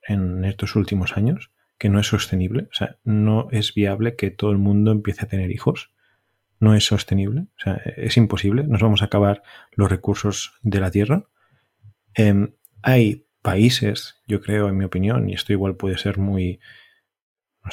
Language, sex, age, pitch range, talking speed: Spanish, male, 30-49, 100-120 Hz, 175 wpm